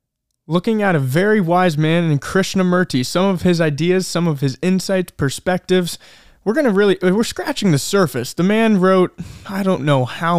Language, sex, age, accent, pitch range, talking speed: English, male, 20-39, American, 150-190 Hz, 185 wpm